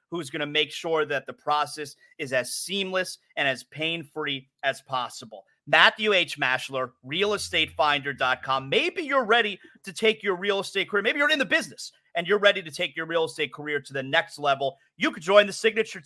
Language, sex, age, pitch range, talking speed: English, male, 30-49, 145-210 Hz, 195 wpm